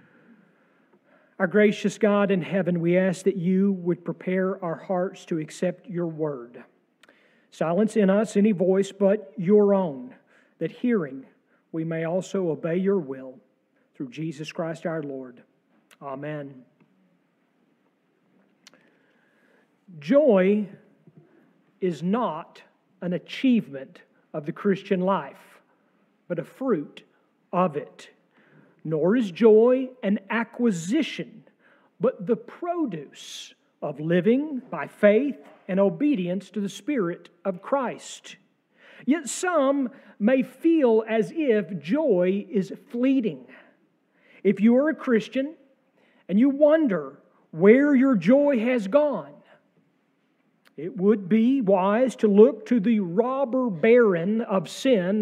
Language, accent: English, American